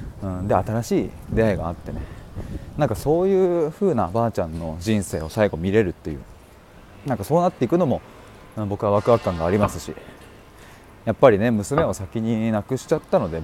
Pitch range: 90-120 Hz